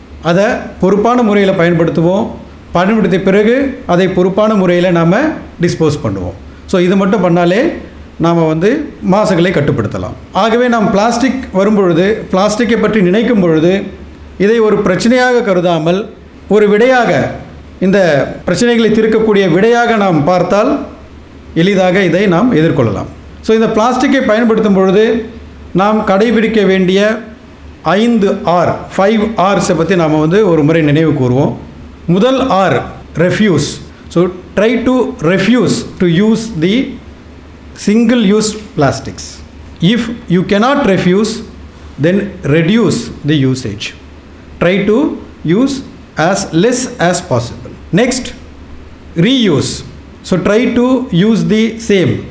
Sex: male